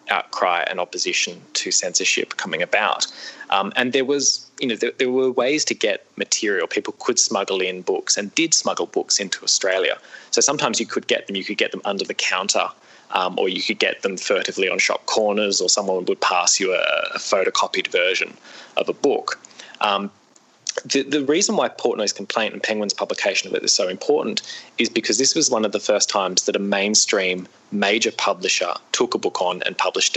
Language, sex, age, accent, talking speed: English, male, 20-39, Australian, 200 wpm